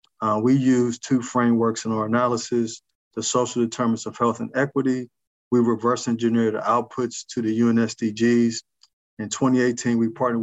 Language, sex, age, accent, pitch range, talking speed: English, male, 40-59, American, 110-120 Hz, 155 wpm